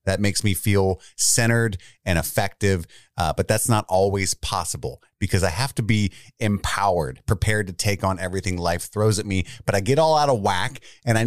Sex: male